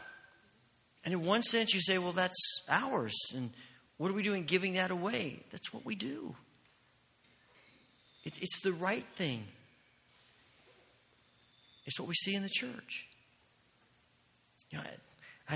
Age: 40-59